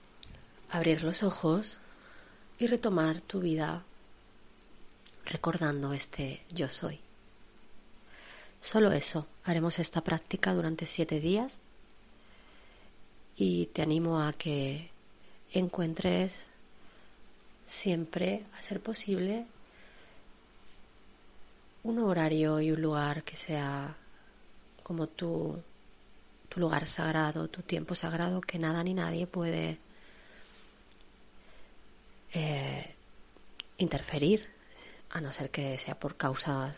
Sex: female